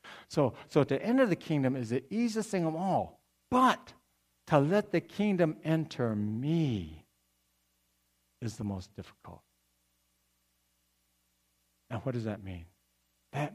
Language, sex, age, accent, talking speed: English, male, 60-79, American, 130 wpm